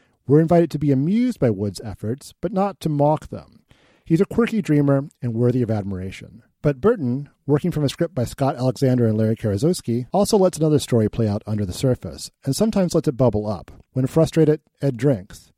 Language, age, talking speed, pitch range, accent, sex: English, 40-59, 200 wpm, 110-150 Hz, American, male